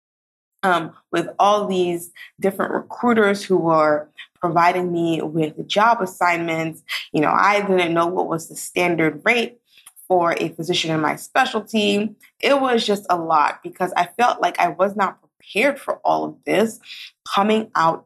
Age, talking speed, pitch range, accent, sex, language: 20-39, 160 wpm, 160-205 Hz, American, female, English